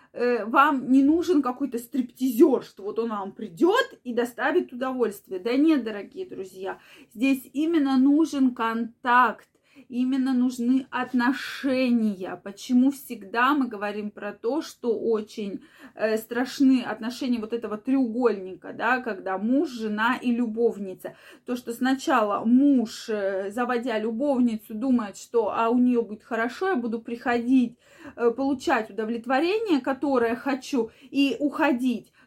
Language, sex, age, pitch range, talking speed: Russian, female, 20-39, 230-300 Hz, 120 wpm